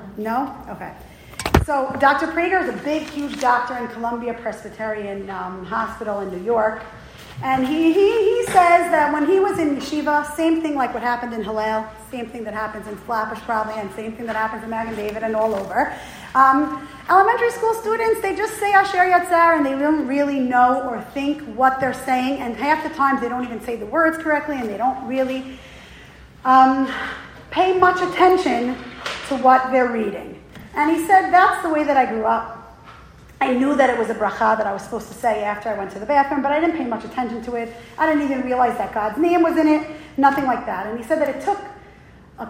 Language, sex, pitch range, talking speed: English, female, 225-310 Hz, 215 wpm